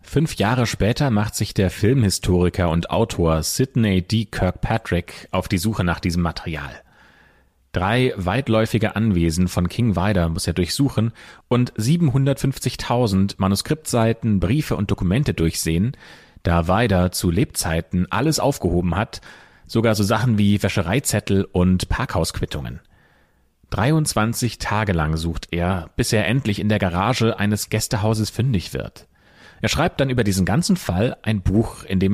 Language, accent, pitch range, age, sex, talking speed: German, German, 90-120 Hz, 30-49, male, 140 wpm